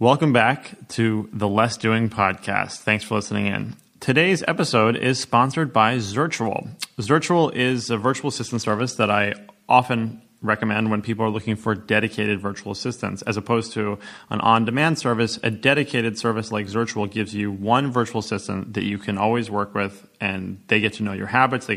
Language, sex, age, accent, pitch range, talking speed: English, male, 20-39, American, 100-115 Hz, 180 wpm